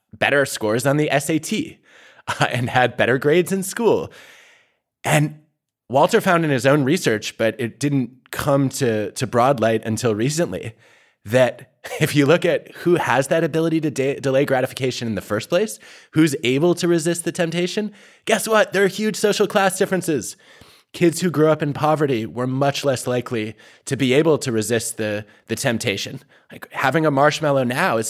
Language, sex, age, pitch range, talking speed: English, male, 20-39, 120-155 Hz, 180 wpm